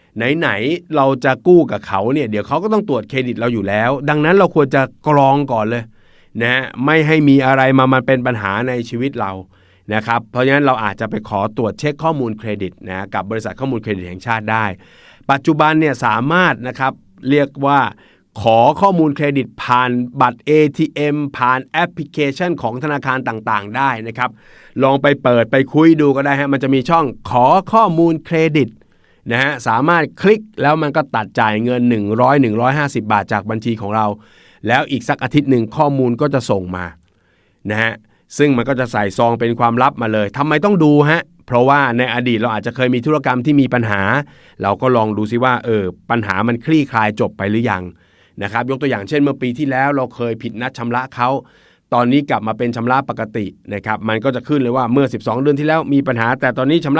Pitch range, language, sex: 110-145 Hz, Thai, male